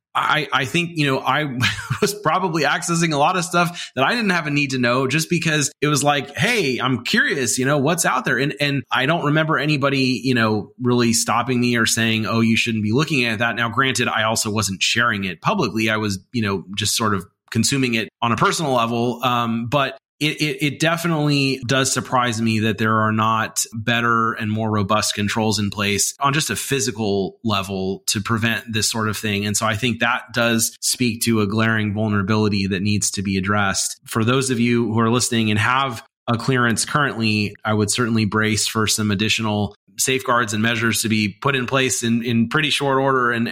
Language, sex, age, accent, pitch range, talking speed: English, male, 30-49, American, 110-135 Hz, 215 wpm